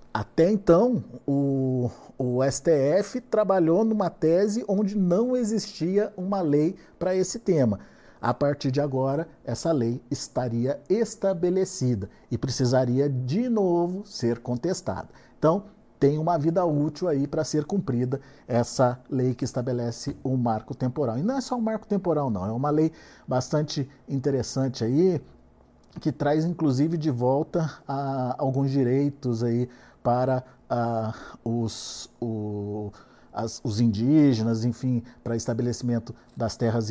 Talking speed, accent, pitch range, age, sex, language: 130 wpm, Brazilian, 115-150 Hz, 50-69, male, Portuguese